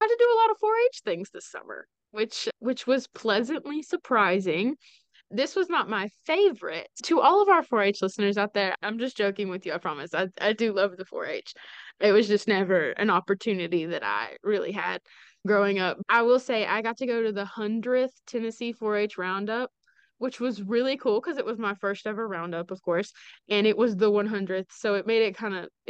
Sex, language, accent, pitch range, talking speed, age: female, English, American, 200-260 Hz, 210 wpm, 20-39